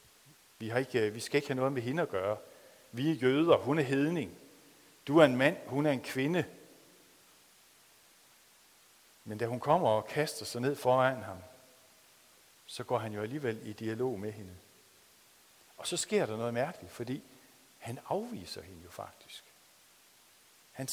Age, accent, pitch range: 60-79, native, 110-145 Hz